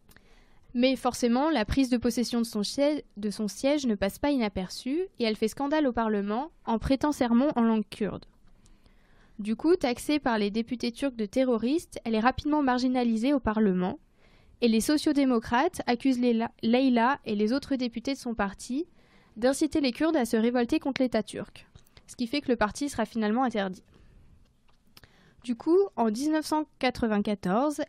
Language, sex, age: French, female, 20-39